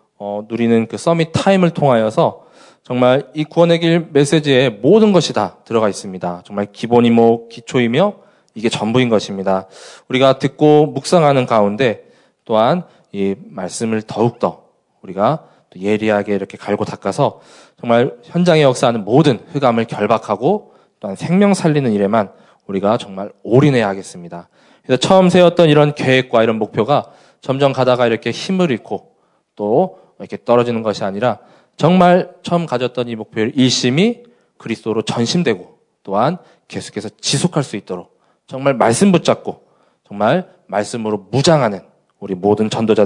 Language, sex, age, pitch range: Korean, male, 20-39, 110-150 Hz